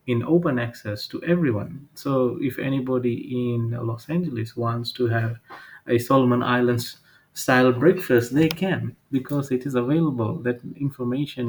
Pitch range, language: 120-145 Hz, English